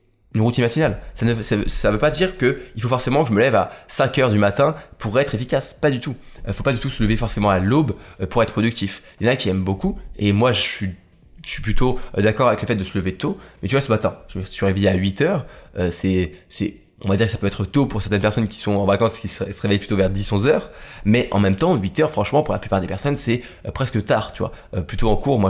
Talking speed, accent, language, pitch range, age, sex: 280 wpm, French, French, 100-125 Hz, 20-39, male